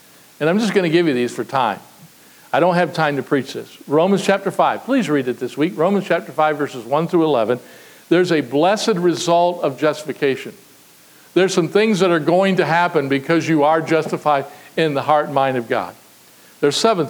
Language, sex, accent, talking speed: English, male, American, 205 wpm